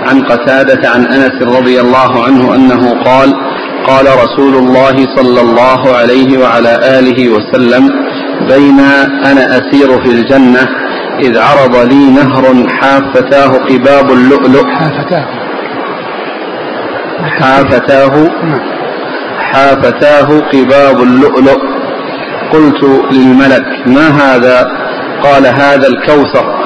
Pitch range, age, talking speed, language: 130-140 Hz, 40-59, 90 wpm, Arabic